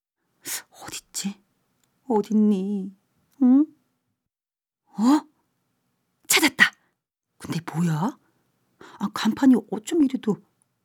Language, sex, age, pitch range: Korean, female, 40-59, 150-220 Hz